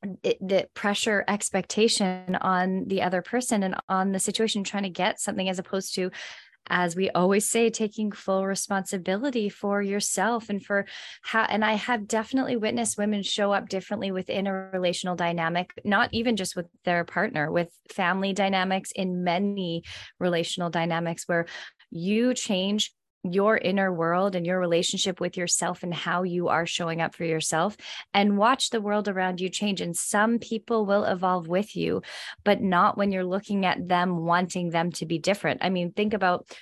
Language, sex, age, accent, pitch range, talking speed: English, female, 20-39, American, 175-210 Hz, 170 wpm